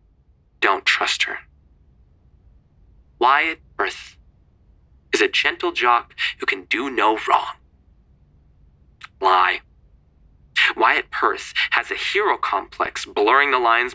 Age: 20-39